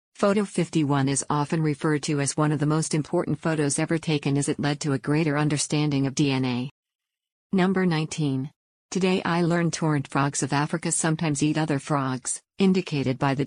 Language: English